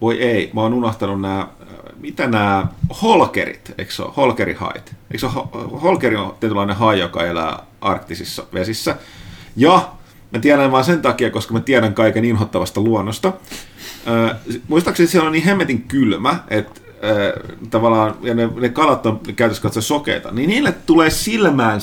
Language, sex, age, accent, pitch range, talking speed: Finnish, male, 30-49, native, 110-145 Hz, 150 wpm